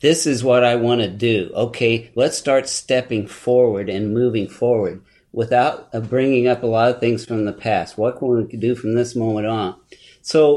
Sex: male